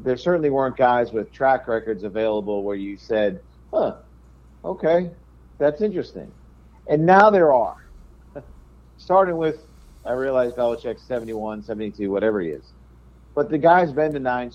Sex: male